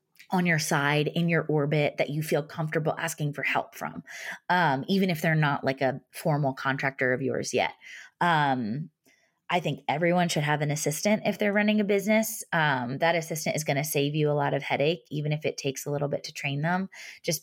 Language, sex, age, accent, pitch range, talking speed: English, female, 20-39, American, 135-160 Hz, 215 wpm